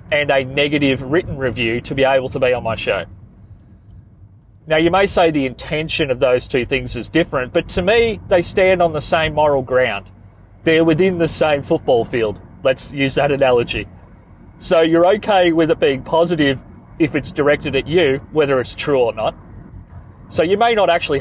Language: English